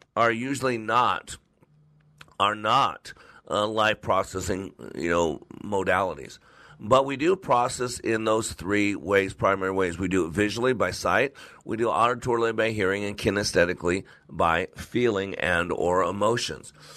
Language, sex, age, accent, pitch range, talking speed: English, male, 50-69, American, 100-125 Hz, 140 wpm